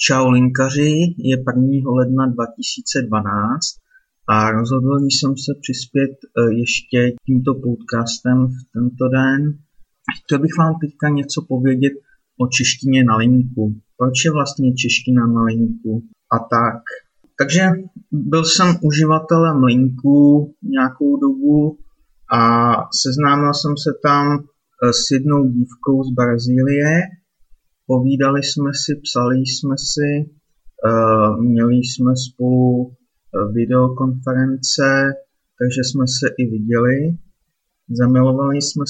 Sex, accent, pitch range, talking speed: male, native, 125-145 Hz, 105 wpm